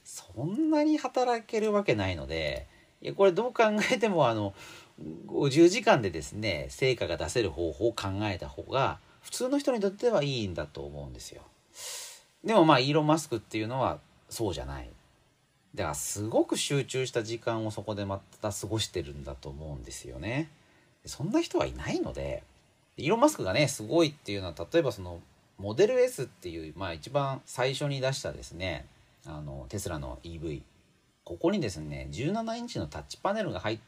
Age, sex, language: 40-59, male, Japanese